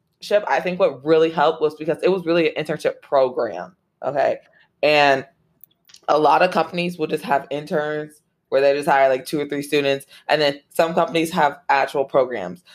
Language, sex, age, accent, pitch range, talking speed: English, female, 20-39, American, 140-165 Hz, 185 wpm